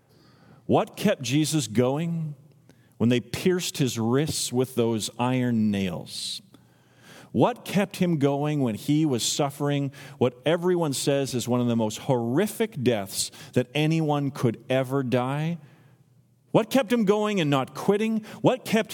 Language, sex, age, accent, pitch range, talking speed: English, male, 40-59, American, 130-190 Hz, 145 wpm